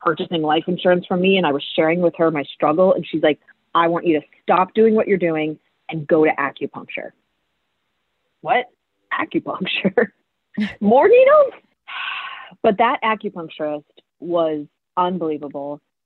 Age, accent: 30-49, American